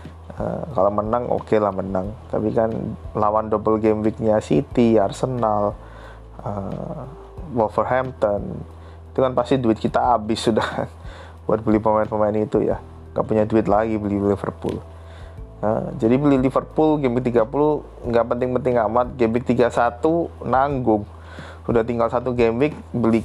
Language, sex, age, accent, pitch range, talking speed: Indonesian, male, 20-39, native, 100-125 Hz, 140 wpm